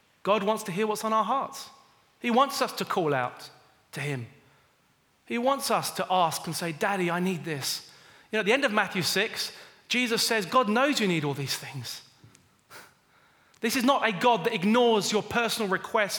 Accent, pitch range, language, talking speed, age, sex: British, 175-230 Hz, English, 200 wpm, 30-49, male